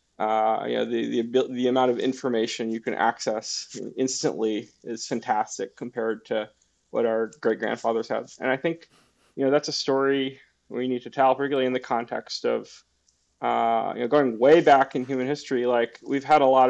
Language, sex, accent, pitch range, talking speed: English, male, American, 115-135 Hz, 190 wpm